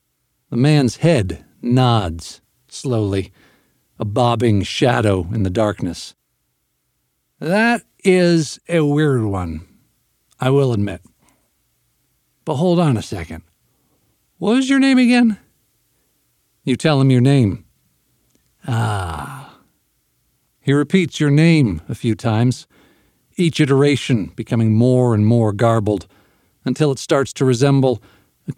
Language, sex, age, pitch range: English, male, 50-69, 105-155 Hz